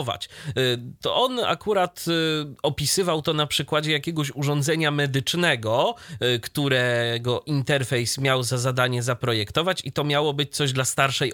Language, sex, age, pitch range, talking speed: Polish, male, 30-49, 120-160 Hz, 120 wpm